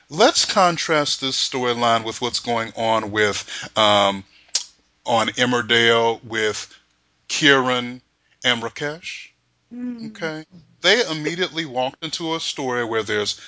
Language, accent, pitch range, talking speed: English, American, 110-140 Hz, 110 wpm